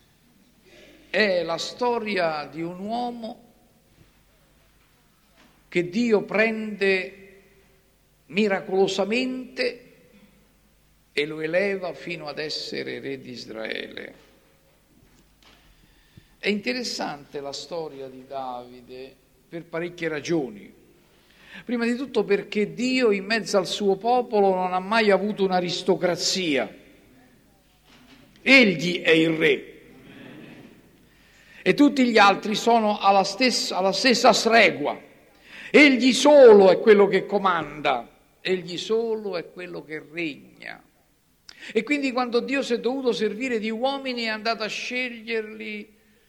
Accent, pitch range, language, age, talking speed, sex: native, 170-230 Hz, Italian, 50-69, 110 wpm, male